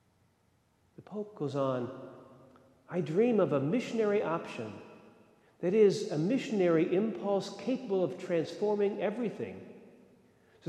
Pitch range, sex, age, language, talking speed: 125-200 Hz, male, 50-69, English, 105 wpm